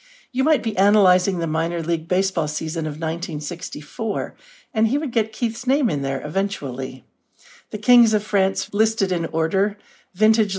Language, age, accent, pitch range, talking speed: English, 60-79, American, 165-220 Hz, 160 wpm